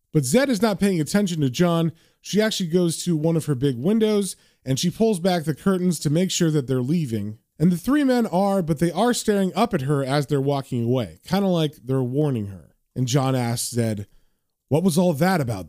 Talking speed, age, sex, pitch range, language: 230 wpm, 20-39, male, 125-185 Hz, English